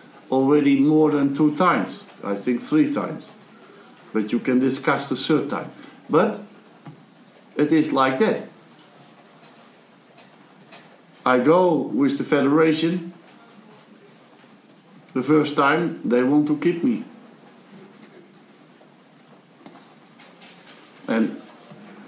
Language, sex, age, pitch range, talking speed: English, male, 60-79, 130-195 Hz, 95 wpm